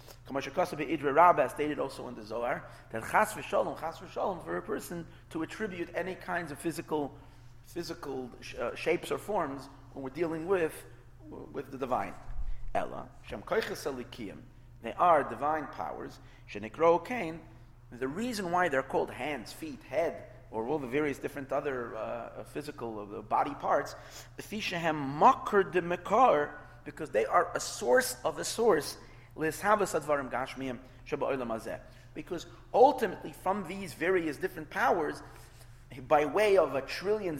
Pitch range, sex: 125-170 Hz, male